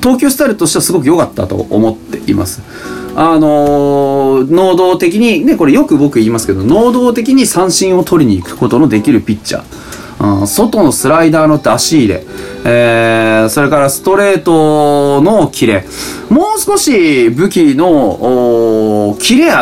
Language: Japanese